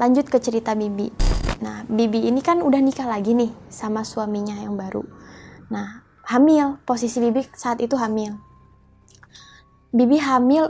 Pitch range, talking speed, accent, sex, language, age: 225-270 Hz, 140 wpm, native, female, Indonesian, 20-39